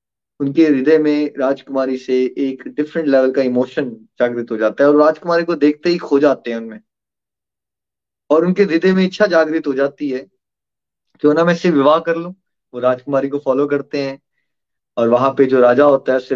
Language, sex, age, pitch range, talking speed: Hindi, male, 30-49, 125-155 Hz, 200 wpm